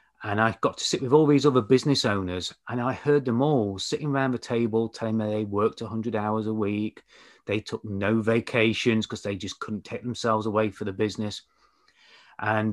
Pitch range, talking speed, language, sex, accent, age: 105-125 Hz, 205 wpm, English, male, British, 30-49